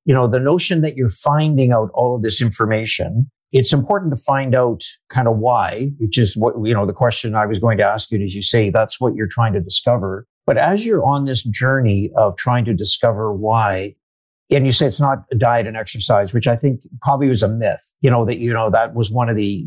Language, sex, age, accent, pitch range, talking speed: English, male, 50-69, American, 110-130 Hz, 245 wpm